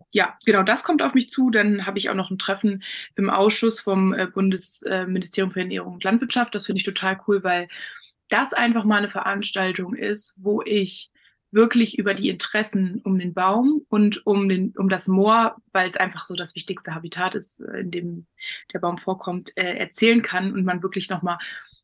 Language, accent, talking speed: German, German, 185 wpm